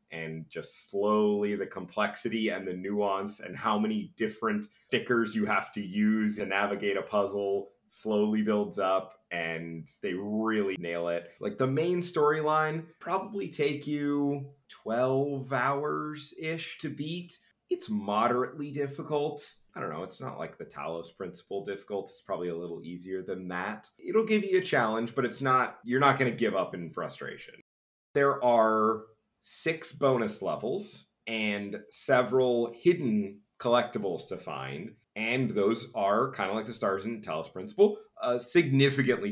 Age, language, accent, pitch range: 30-49, English, American, 105-145 Hz